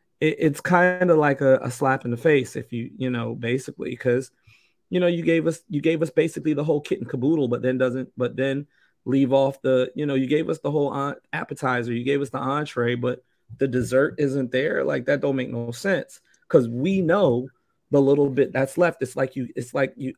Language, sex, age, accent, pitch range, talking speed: English, male, 30-49, American, 125-145 Hz, 225 wpm